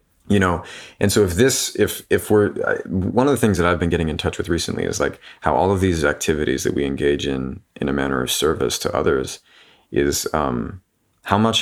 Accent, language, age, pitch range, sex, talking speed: American, English, 30-49, 80-100 Hz, male, 220 wpm